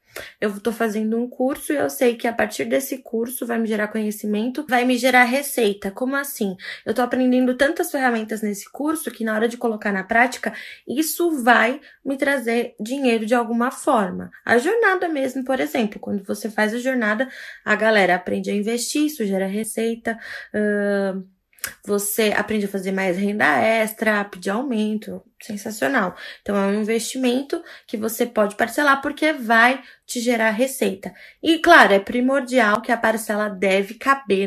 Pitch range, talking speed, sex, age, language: 215-255 Hz, 165 wpm, female, 20-39, Portuguese